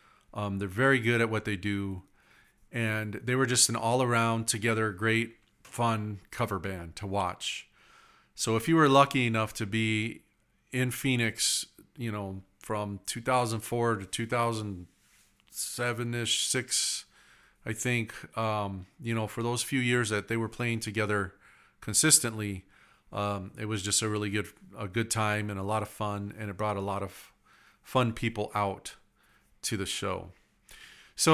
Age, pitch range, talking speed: 40-59, 100-115 Hz, 155 wpm